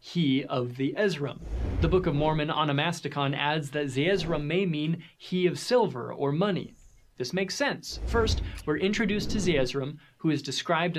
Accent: American